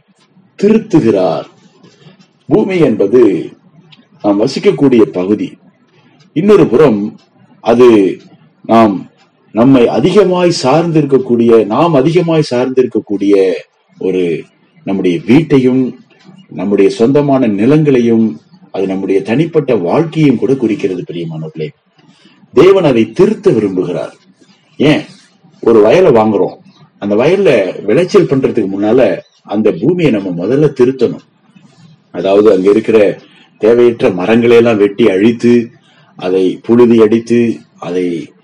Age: 30-49